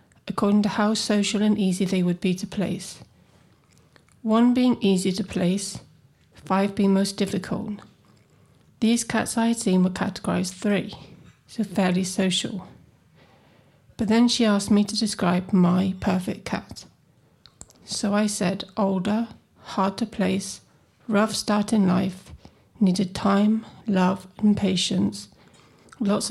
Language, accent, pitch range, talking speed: Swedish, British, 185-215 Hz, 130 wpm